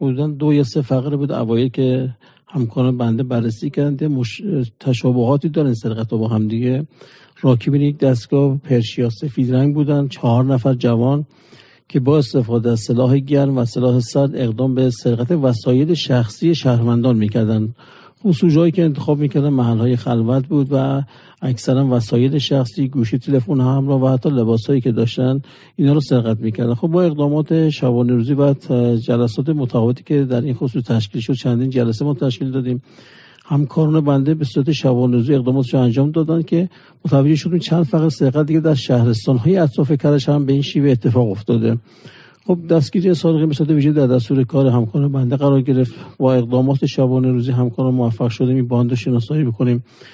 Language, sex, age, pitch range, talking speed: Persian, male, 50-69, 125-145 Hz, 160 wpm